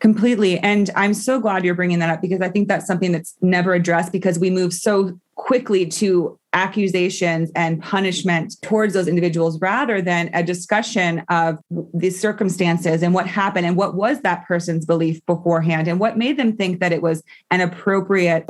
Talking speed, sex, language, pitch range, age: 180 wpm, female, English, 175-215 Hz, 30-49